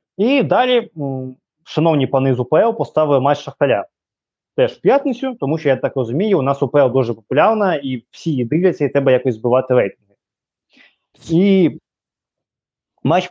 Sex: male